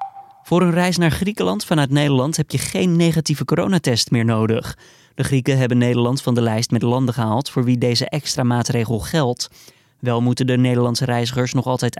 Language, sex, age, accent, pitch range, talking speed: Dutch, male, 20-39, Dutch, 120-145 Hz, 185 wpm